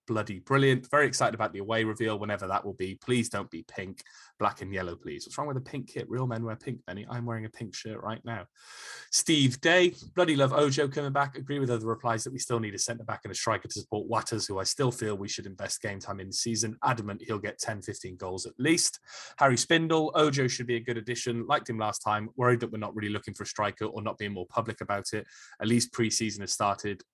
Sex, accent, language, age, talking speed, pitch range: male, British, English, 20-39, 250 wpm, 105-125 Hz